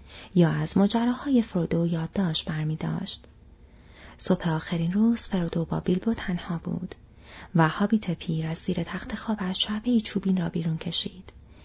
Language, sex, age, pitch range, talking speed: Persian, female, 30-49, 170-230 Hz, 155 wpm